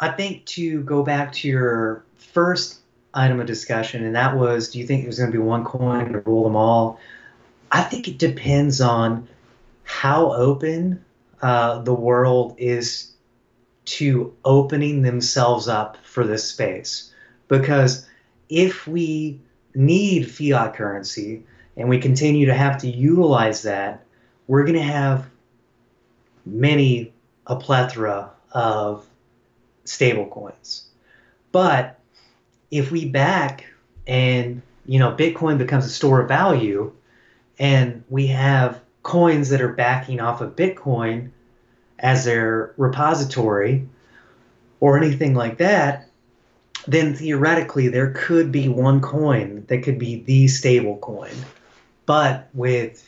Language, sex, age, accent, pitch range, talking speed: English, male, 30-49, American, 120-140 Hz, 130 wpm